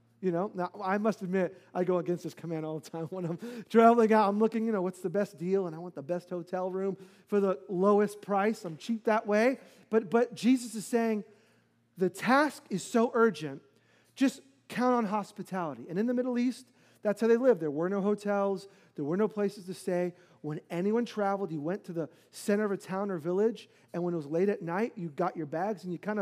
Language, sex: English, male